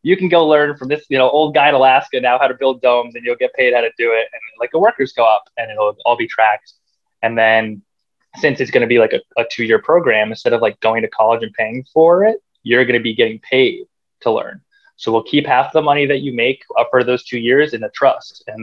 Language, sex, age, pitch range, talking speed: English, male, 20-39, 110-135 Hz, 265 wpm